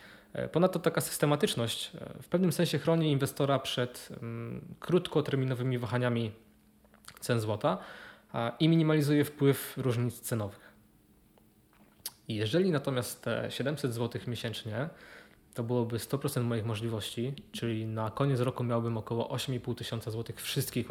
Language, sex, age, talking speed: Polish, male, 20-39, 110 wpm